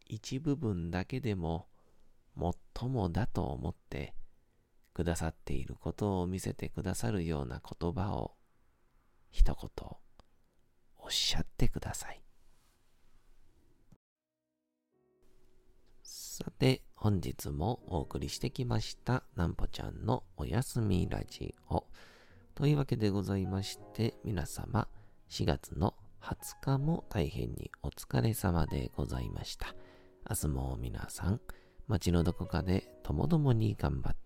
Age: 40-59